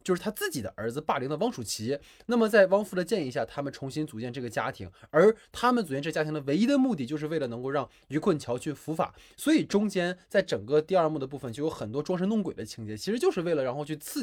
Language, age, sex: Chinese, 20-39, male